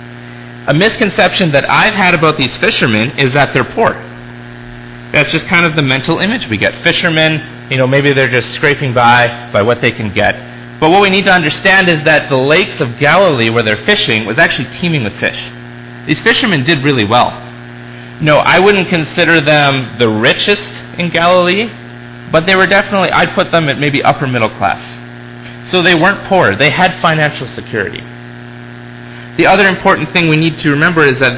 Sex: male